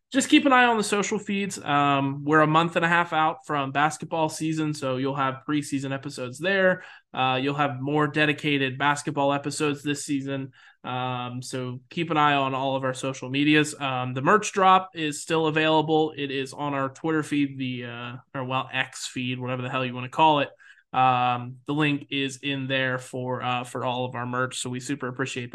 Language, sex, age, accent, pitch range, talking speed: English, male, 20-39, American, 135-185 Hz, 210 wpm